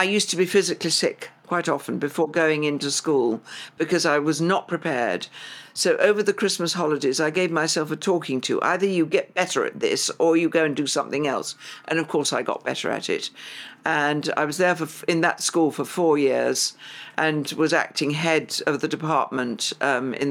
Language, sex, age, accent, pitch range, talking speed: English, female, 60-79, British, 140-165 Hz, 205 wpm